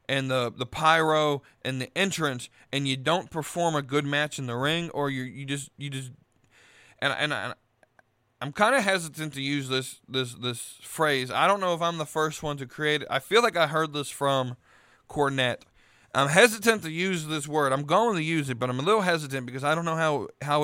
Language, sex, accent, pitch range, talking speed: English, male, American, 130-165 Hz, 225 wpm